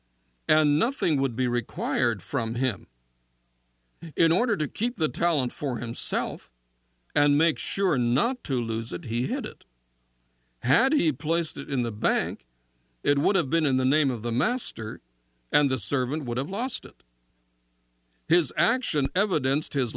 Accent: American